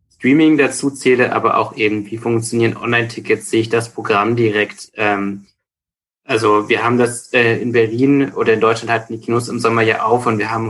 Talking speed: 195 wpm